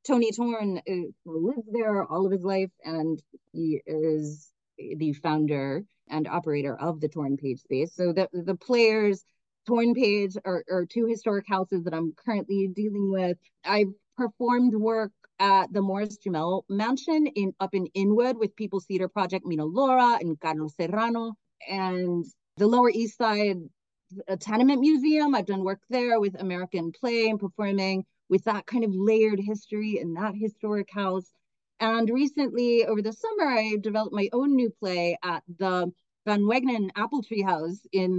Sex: female